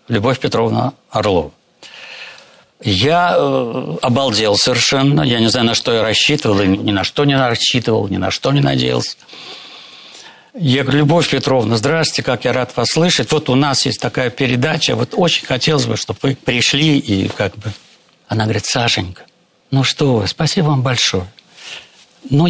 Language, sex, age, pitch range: Russian, male, 60-79, 110-145 Hz